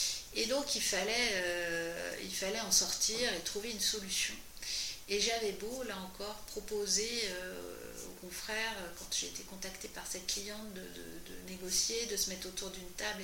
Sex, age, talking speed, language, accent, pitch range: female, 40-59, 175 wpm, French, French, 185-220 Hz